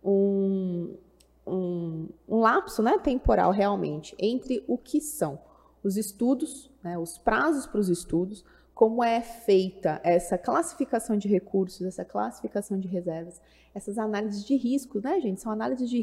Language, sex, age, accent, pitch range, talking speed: Portuguese, female, 20-39, Brazilian, 180-220 Hz, 145 wpm